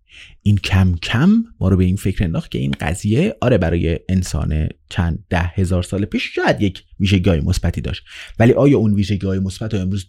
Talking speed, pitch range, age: 190 wpm, 100-145 Hz, 30-49